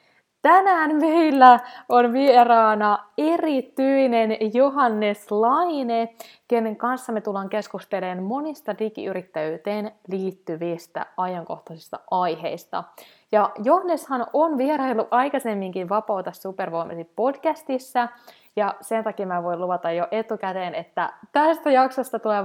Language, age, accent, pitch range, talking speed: Finnish, 20-39, native, 190-255 Hz, 100 wpm